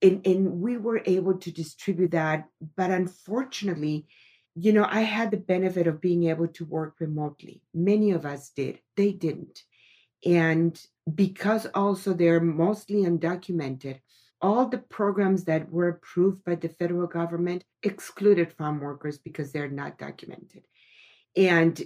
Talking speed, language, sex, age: 145 wpm, English, female, 50-69